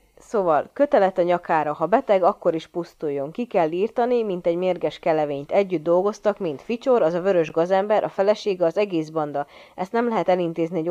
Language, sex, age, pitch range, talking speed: Hungarian, female, 30-49, 155-190 Hz, 185 wpm